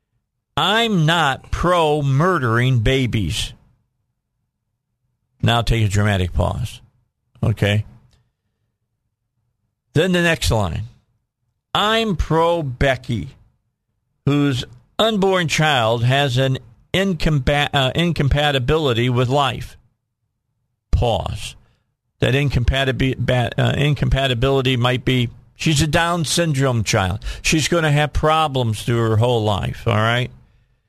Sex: male